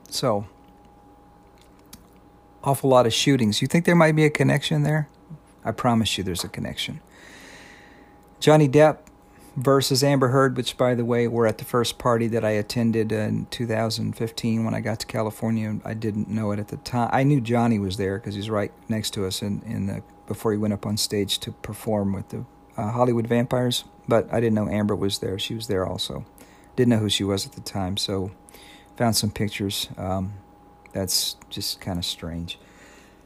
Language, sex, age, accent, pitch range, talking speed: English, male, 50-69, American, 105-125 Hz, 195 wpm